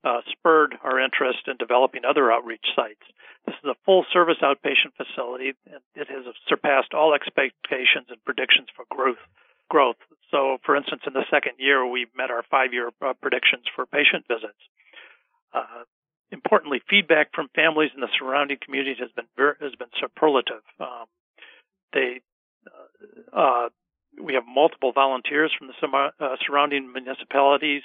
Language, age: English, 50-69